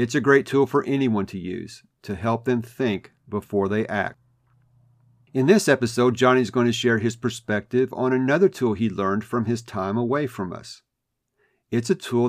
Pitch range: 100-120 Hz